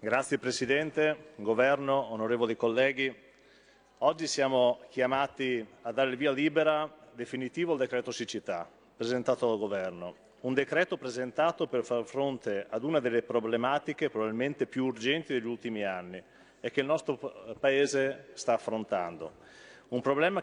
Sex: male